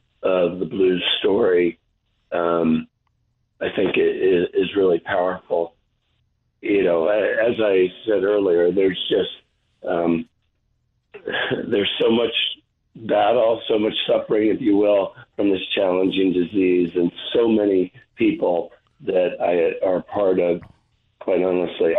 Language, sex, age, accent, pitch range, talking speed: English, male, 50-69, American, 85-100 Hz, 125 wpm